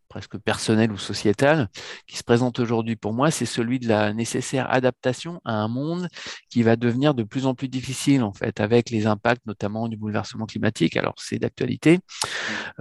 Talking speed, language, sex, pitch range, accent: 185 wpm, French, male, 110-135 Hz, French